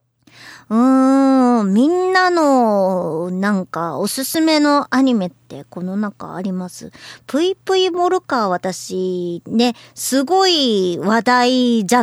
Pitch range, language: 185-285 Hz, Japanese